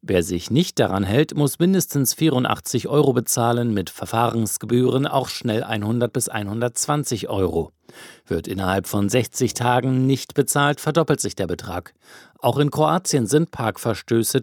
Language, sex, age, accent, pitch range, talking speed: German, male, 50-69, German, 105-140 Hz, 140 wpm